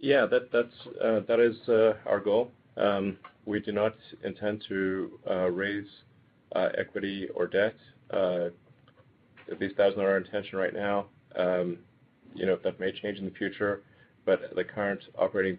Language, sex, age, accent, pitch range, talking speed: English, male, 40-59, American, 95-115 Hz, 170 wpm